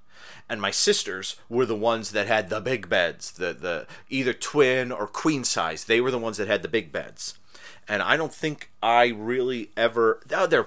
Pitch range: 100-135 Hz